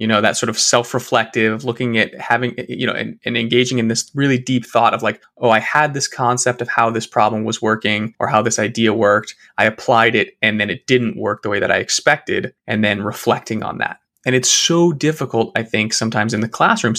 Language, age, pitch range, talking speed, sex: English, 20-39, 115-140 Hz, 230 wpm, male